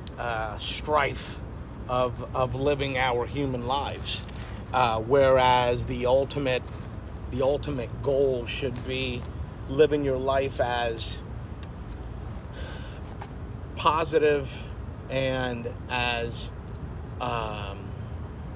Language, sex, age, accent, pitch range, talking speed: English, male, 40-59, American, 105-130 Hz, 80 wpm